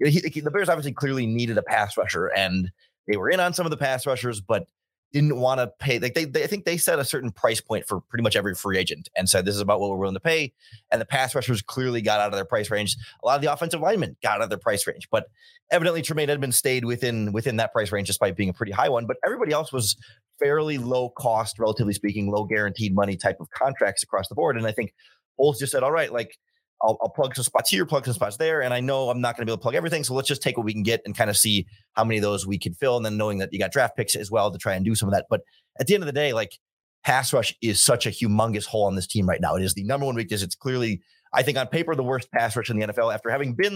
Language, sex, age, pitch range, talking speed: English, male, 30-49, 105-145 Hz, 300 wpm